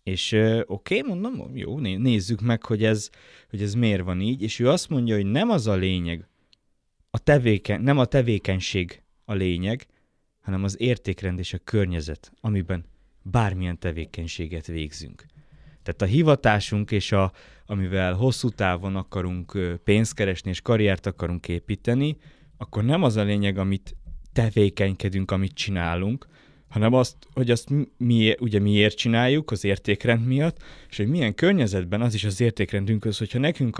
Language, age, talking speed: Hungarian, 20-39, 145 wpm